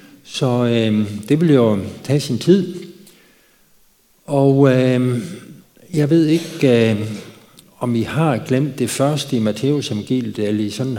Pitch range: 115-150 Hz